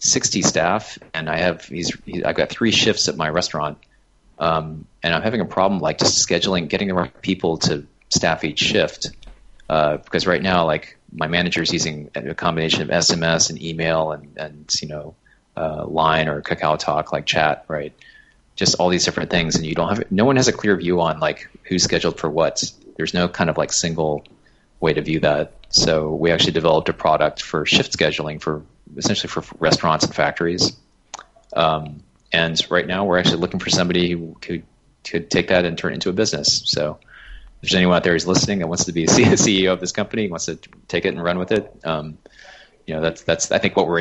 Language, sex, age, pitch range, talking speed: English, male, 30-49, 75-85 Hz, 215 wpm